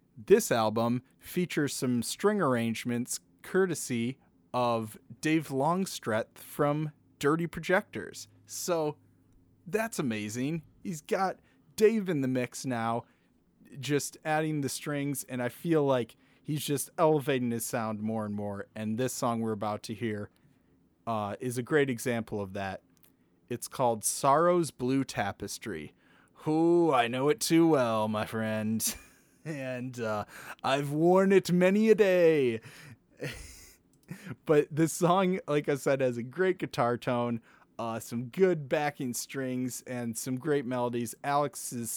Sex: male